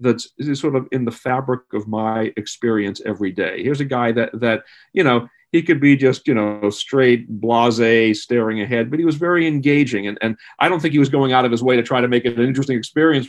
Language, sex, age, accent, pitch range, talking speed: English, male, 40-59, American, 115-145 Hz, 240 wpm